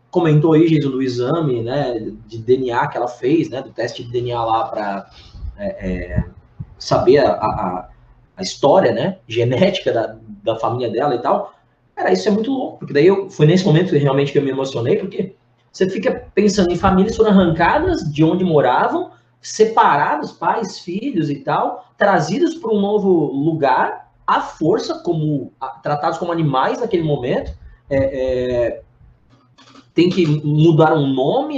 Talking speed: 165 wpm